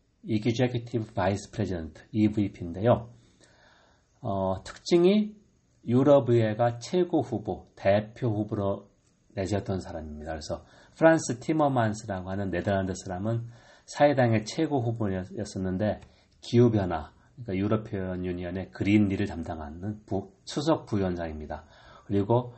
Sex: male